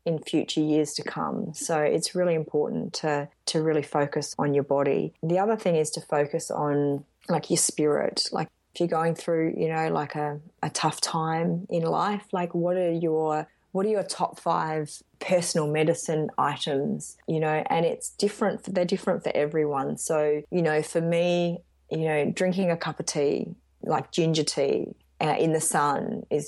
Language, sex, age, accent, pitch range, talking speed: English, female, 20-39, Australian, 150-180 Hz, 185 wpm